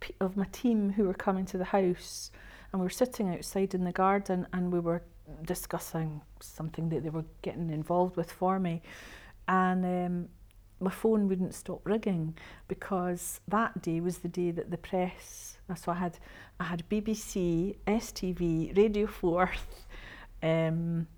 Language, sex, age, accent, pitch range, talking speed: English, female, 50-69, British, 175-200 Hz, 160 wpm